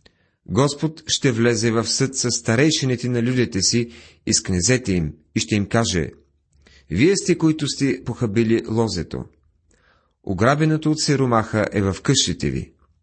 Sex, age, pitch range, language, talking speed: male, 40-59, 95-135 Hz, Bulgarian, 145 wpm